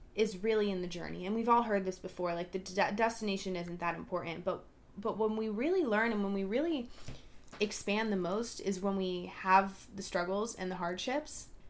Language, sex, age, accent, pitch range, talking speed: English, female, 20-39, American, 185-230 Hz, 205 wpm